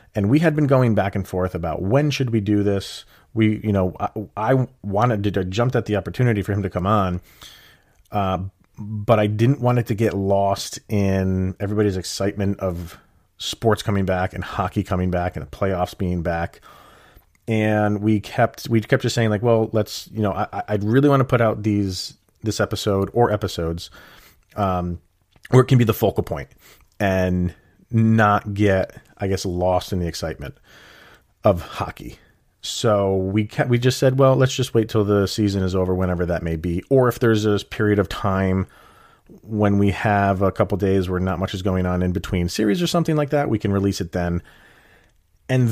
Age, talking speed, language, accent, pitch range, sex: 30-49, 195 wpm, English, American, 90-110 Hz, male